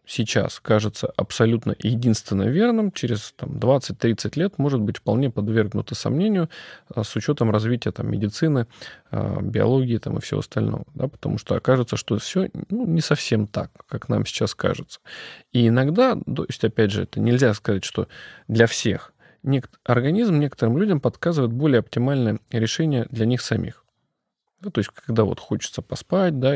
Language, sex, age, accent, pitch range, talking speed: Russian, male, 20-39, native, 110-140 Hz, 150 wpm